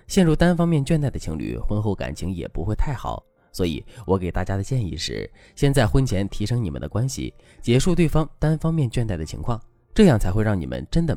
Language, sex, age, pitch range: Chinese, male, 20-39, 90-140 Hz